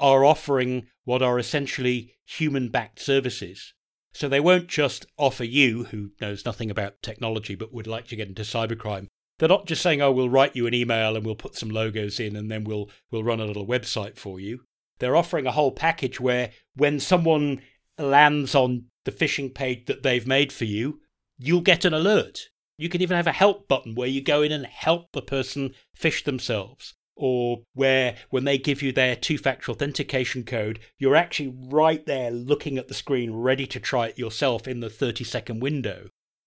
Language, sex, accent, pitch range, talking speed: English, male, British, 115-140 Hz, 195 wpm